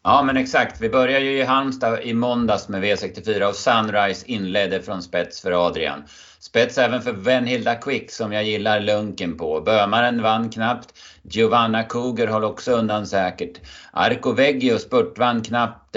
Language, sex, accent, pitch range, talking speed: Swedish, male, native, 95-115 Hz, 160 wpm